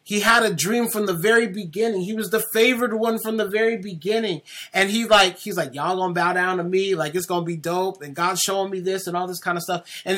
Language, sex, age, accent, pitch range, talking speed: English, male, 30-49, American, 175-230 Hz, 265 wpm